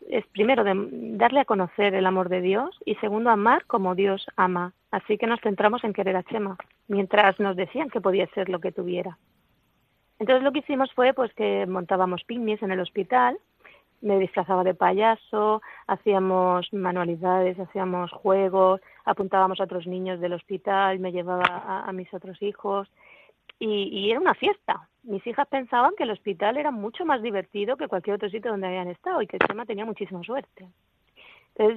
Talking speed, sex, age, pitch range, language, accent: 180 wpm, female, 30-49, 190-230 Hz, Spanish, Spanish